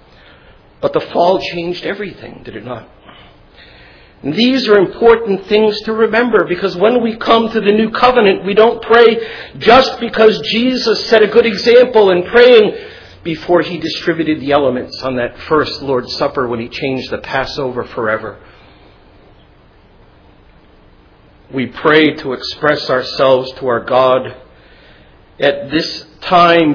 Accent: American